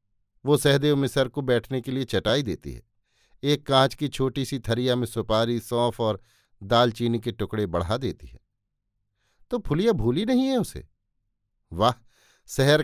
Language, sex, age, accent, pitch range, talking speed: Hindi, male, 50-69, native, 110-155 Hz, 160 wpm